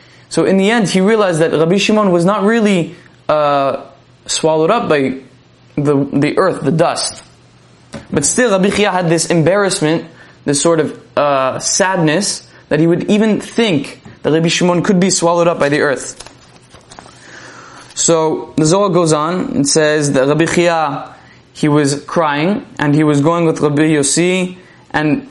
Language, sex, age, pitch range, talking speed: English, male, 20-39, 150-185 Hz, 165 wpm